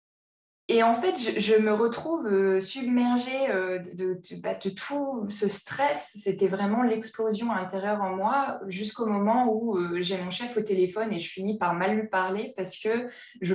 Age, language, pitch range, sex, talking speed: 20-39, French, 185-235 Hz, female, 170 wpm